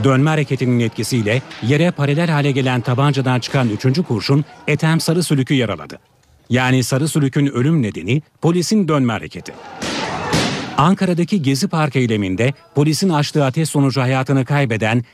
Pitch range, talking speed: 125-150 Hz, 130 wpm